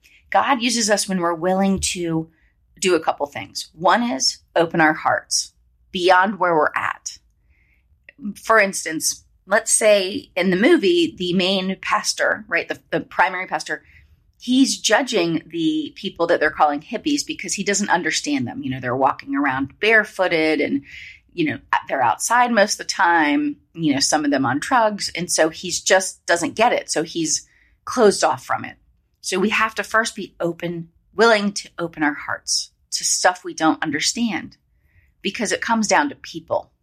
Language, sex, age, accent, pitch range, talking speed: English, female, 30-49, American, 155-210 Hz, 175 wpm